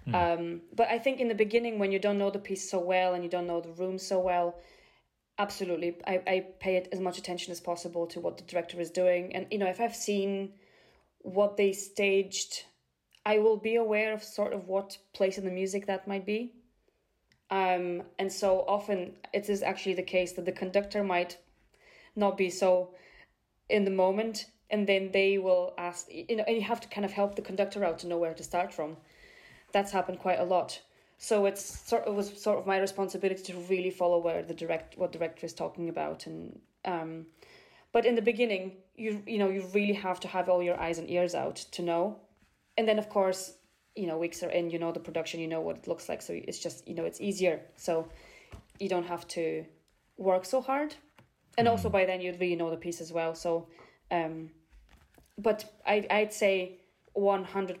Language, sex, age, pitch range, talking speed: English, female, 20-39, 175-205 Hz, 215 wpm